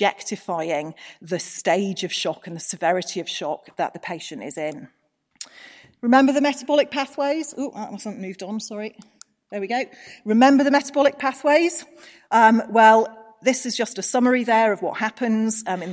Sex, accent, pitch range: female, British, 180-240 Hz